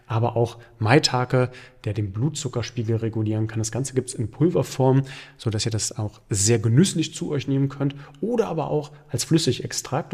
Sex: male